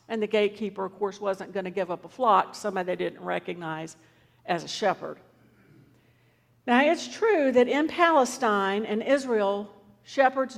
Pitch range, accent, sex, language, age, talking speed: 200-265 Hz, American, female, English, 50-69, 160 wpm